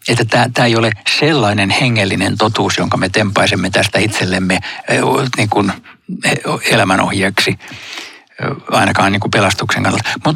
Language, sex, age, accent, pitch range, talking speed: Finnish, male, 60-79, native, 100-120 Hz, 115 wpm